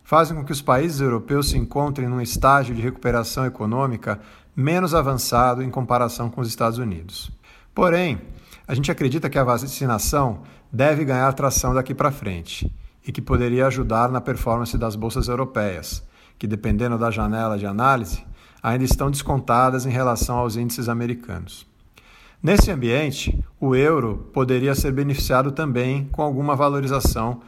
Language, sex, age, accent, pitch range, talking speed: Portuguese, male, 50-69, Brazilian, 110-140 Hz, 150 wpm